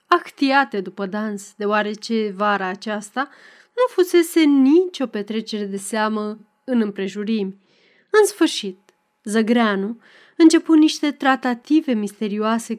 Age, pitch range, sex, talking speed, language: 20-39, 210-285 Hz, female, 100 wpm, Romanian